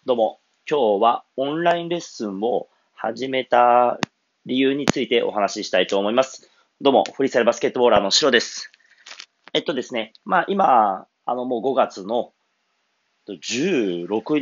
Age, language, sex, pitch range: 30-49, Japanese, male, 110-140 Hz